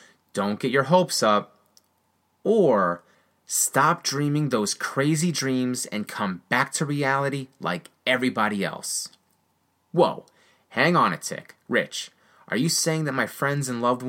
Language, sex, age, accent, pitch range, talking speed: English, male, 30-49, American, 115-155 Hz, 140 wpm